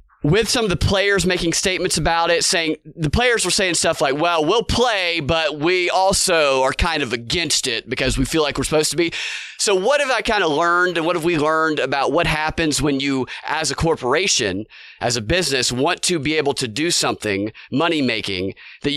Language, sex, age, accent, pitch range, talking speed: English, male, 30-49, American, 145-185 Hz, 210 wpm